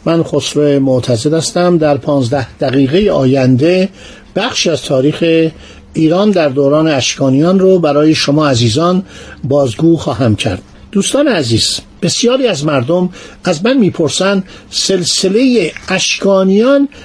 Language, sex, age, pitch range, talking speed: Persian, male, 50-69, 145-215 Hz, 115 wpm